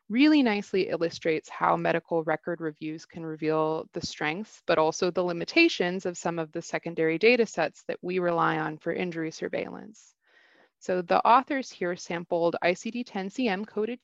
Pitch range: 160-200 Hz